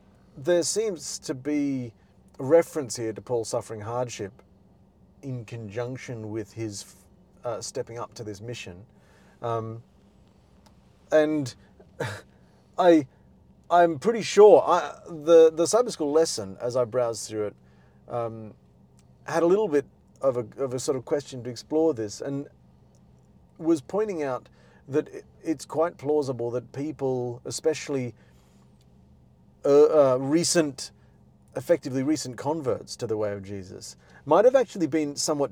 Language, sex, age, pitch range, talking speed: English, male, 40-59, 105-155 Hz, 135 wpm